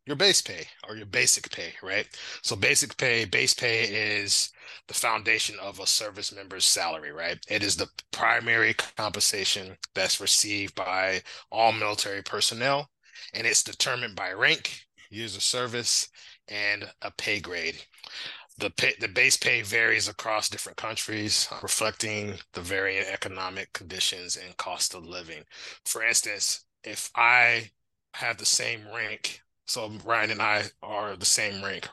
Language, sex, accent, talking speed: English, male, American, 145 wpm